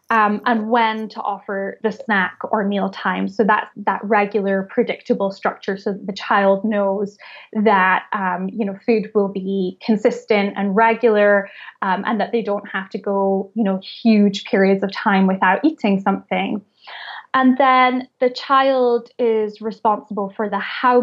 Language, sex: English, female